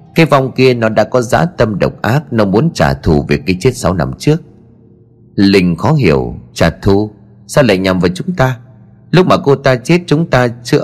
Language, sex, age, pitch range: Vietnamese, male, 30-49, 95-130 Hz